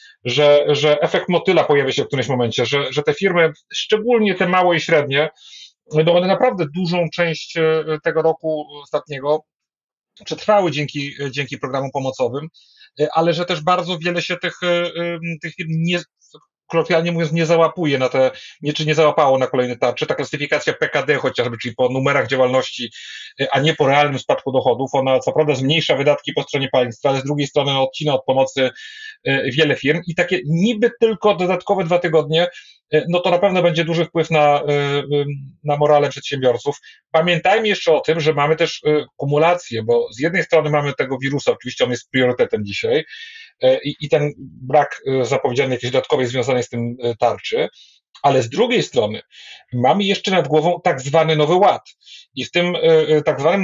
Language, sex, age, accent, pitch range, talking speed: Polish, male, 30-49, native, 135-170 Hz, 170 wpm